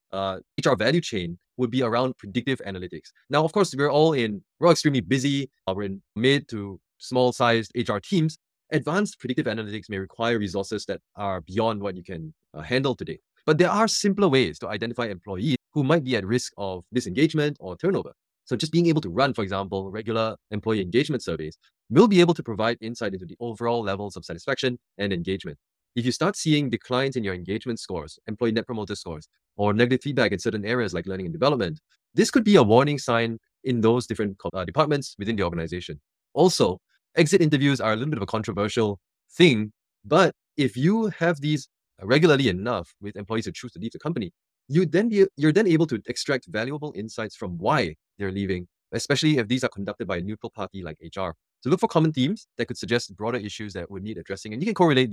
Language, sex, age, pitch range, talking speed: English, male, 20-39, 100-145 Hz, 210 wpm